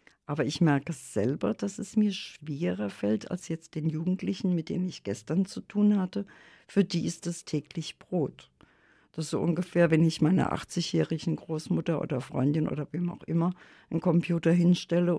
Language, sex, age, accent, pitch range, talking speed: German, female, 50-69, German, 160-195 Hz, 180 wpm